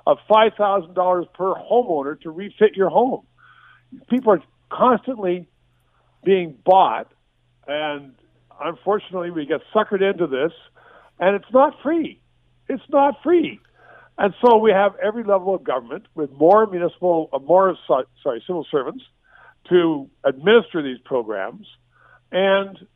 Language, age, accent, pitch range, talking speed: English, 50-69, American, 160-215 Hz, 120 wpm